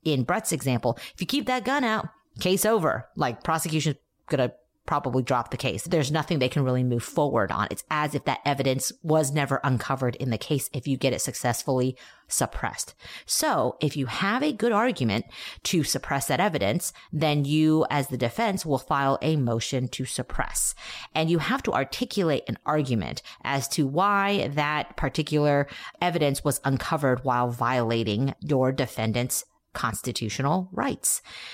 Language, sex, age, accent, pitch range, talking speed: English, female, 30-49, American, 130-175 Hz, 165 wpm